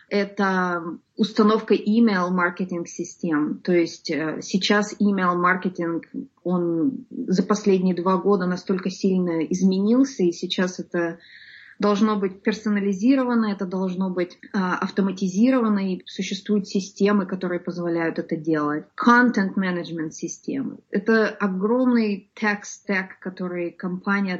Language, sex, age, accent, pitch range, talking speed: Russian, female, 20-39, native, 180-215 Hz, 100 wpm